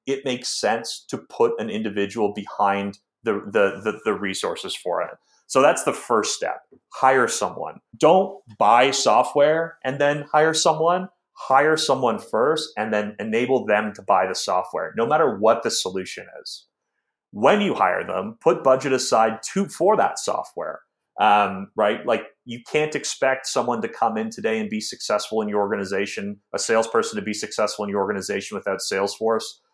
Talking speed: 170 wpm